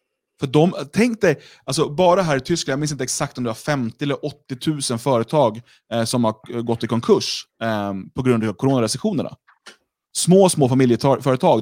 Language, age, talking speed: Swedish, 30-49, 170 wpm